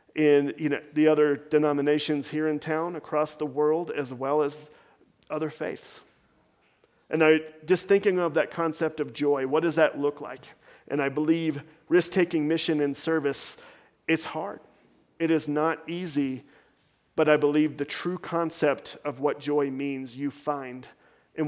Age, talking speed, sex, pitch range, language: 40-59, 160 wpm, male, 145-165 Hz, English